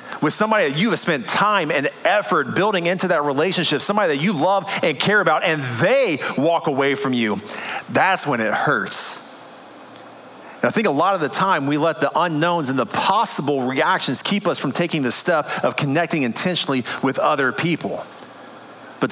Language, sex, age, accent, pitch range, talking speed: English, male, 30-49, American, 155-205 Hz, 185 wpm